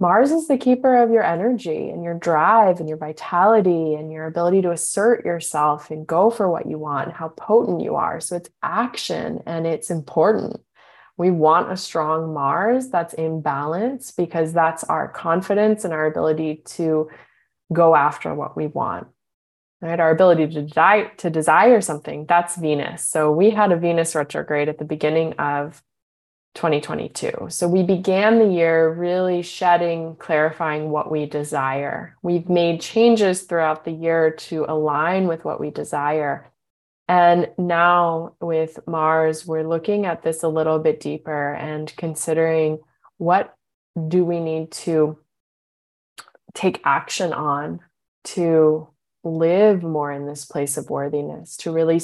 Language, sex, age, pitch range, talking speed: English, female, 20-39, 155-175 Hz, 150 wpm